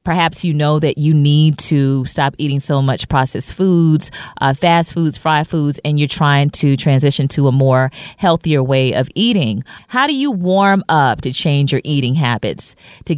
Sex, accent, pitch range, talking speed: female, American, 140-185 Hz, 185 wpm